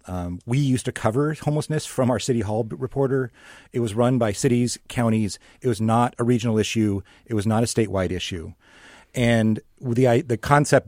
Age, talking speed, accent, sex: 40-59, 190 wpm, American, male